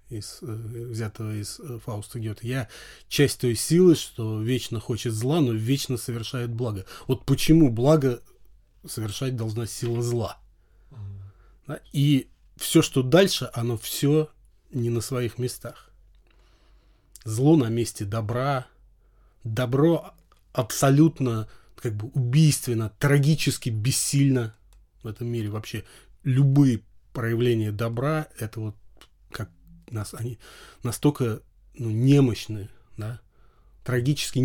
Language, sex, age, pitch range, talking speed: Russian, male, 20-39, 110-130 Hz, 105 wpm